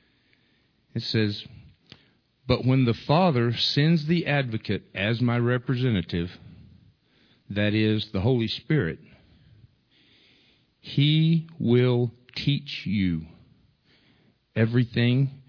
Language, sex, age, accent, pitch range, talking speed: English, male, 50-69, American, 100-130 Hz, 85 wpm